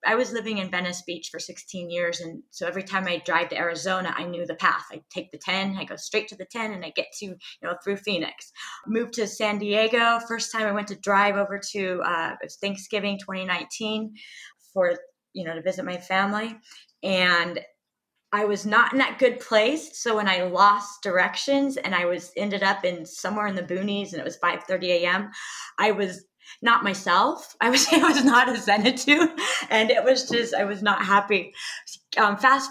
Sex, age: female, 20-39